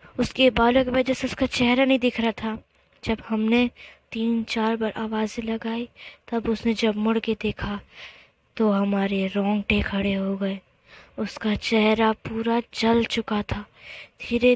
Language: Hindi